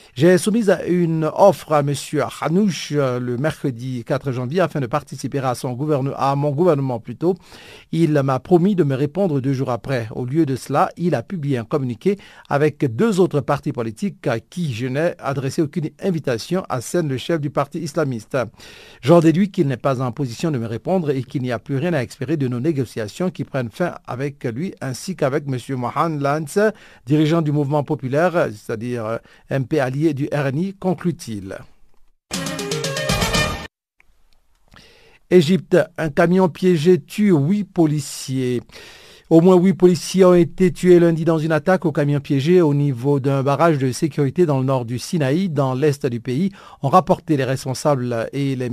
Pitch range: 130-170 Hz